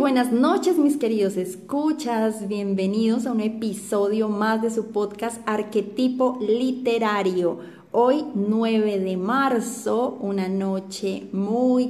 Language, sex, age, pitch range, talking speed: Spanish, female, 20-39, 195-240 Hz, 110 wpm